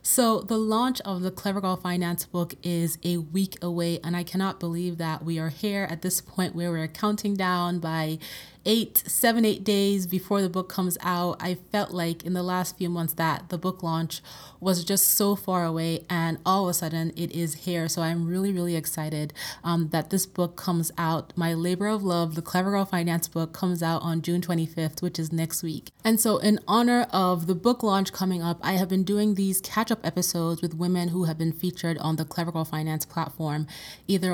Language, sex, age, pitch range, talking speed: English, female, 20-39, 165-185 Hz, 215 wpm